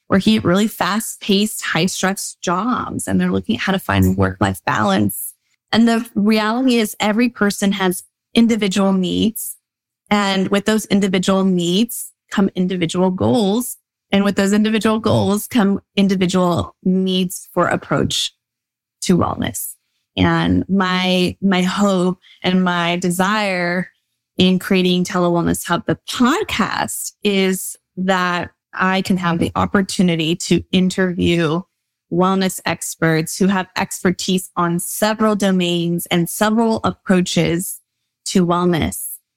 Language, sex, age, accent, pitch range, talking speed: English, female, 20-39, American, 175-200 Hz, 120 wpm